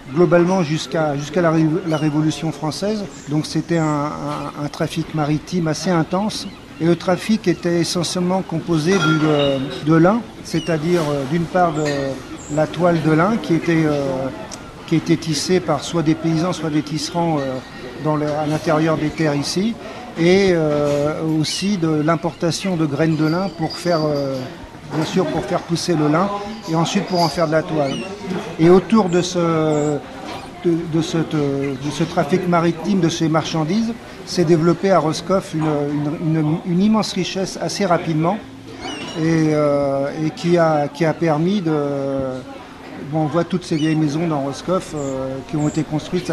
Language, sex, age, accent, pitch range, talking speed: French, male, 50-69, French, 150-175 Hz, 165 wpm